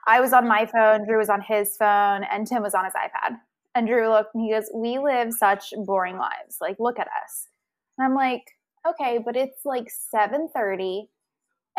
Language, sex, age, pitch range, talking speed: English, female, 20-39, 200-260 Hz, 200 wpm